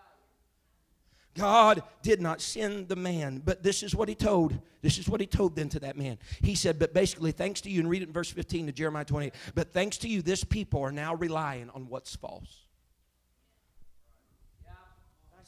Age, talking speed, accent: 40-59, 195 wpm, American